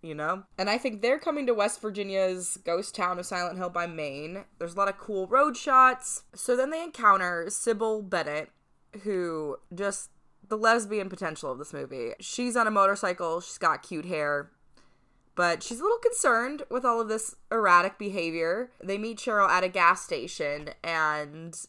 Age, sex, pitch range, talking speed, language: 20-39, female, 155-205 Hz, 180 wpm, English